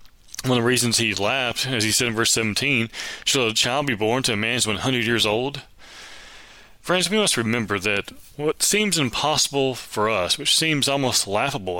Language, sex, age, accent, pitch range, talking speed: English, male, 30-49, American, 110-135 Hz, 195 wpm